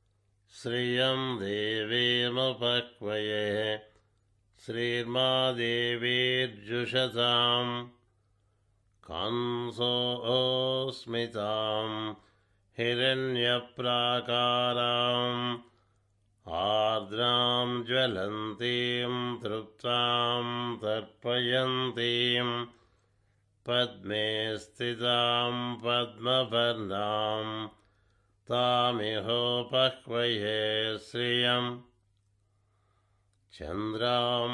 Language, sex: Telugu, male